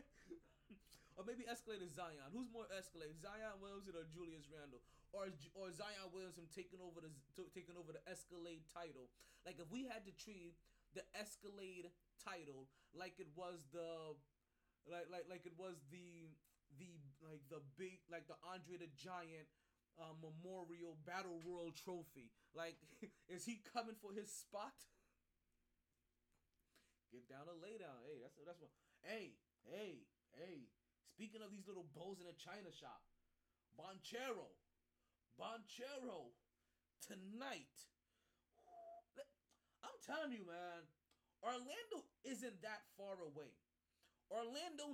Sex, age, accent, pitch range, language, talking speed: male, 20-39, American, 160-225 Hz, English, 130 wpm